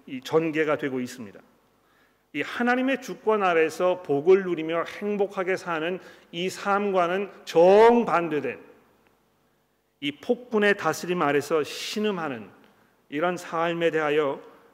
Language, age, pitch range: Korean, 40-59, 150-180 Hz